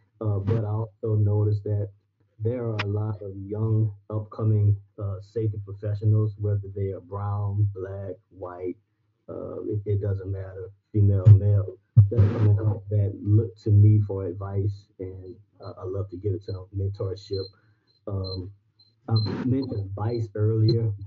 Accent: American